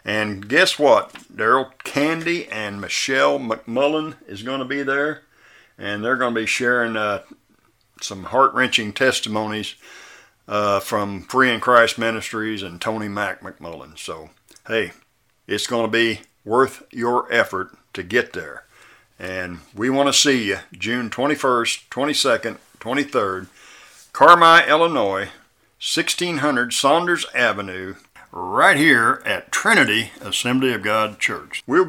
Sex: male